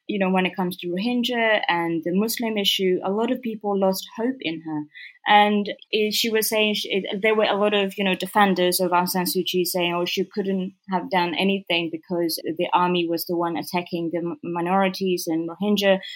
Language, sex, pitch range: English, female, 180-215 Hz